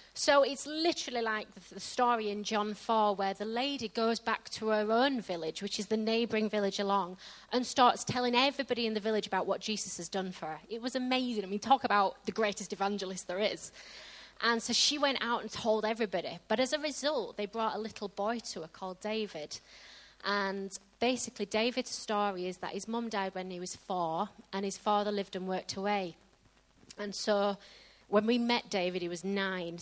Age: 20-39